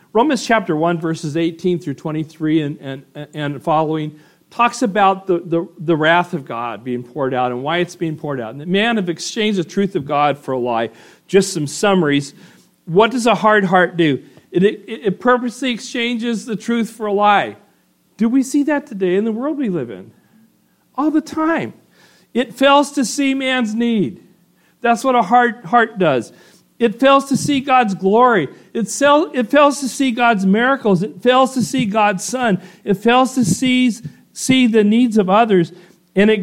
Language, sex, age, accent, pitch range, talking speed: English, male, 50-69, American, 165-245 Hz, 185 wpm